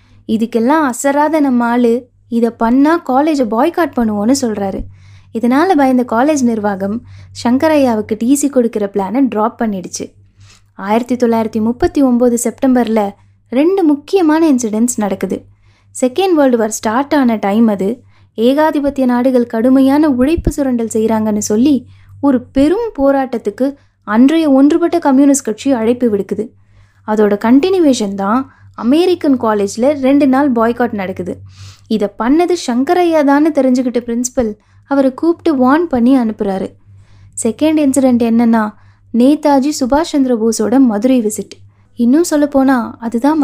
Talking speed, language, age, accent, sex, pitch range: 115 wpm, Tamil, 20-39, native, female, 210-275 Hz